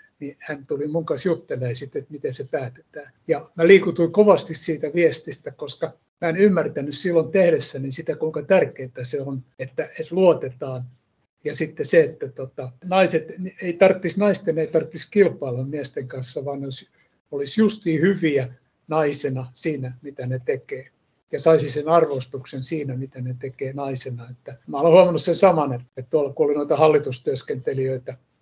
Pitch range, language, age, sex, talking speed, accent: 135-165 Hz, Finnish, 60-79, male, 150 wpm, native